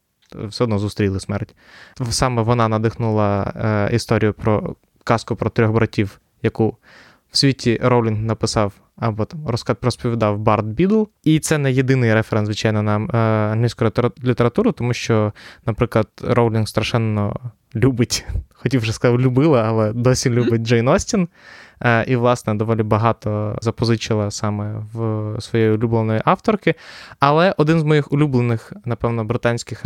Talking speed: 130 wpm